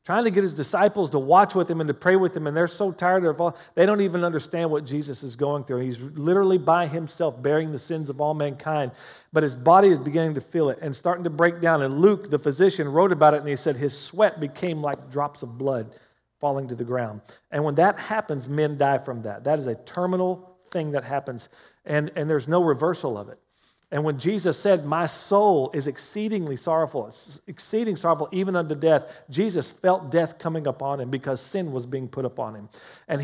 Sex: male